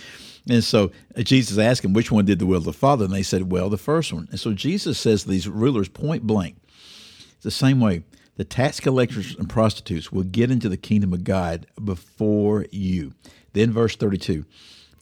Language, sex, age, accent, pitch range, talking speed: English, male, 60-79, American, 105-155 Hz, 195 wpm